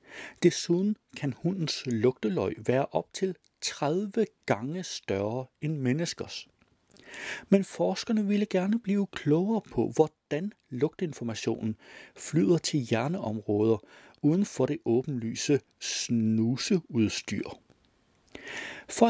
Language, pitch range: Danish, 115-175 Hz